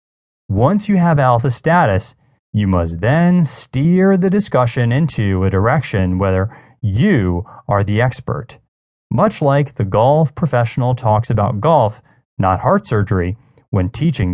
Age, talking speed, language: 30-49, 135 wpm, English